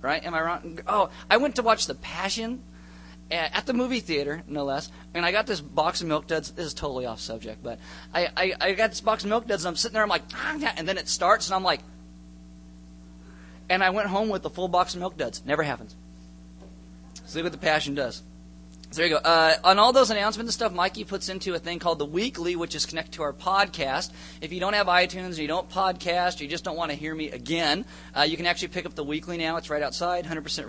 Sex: male